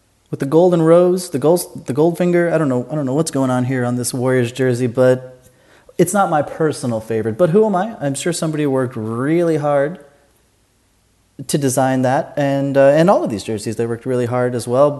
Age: 30-49